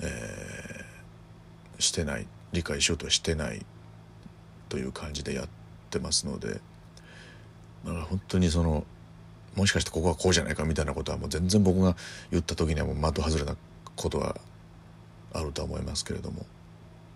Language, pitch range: Japanese, 80-95 Hz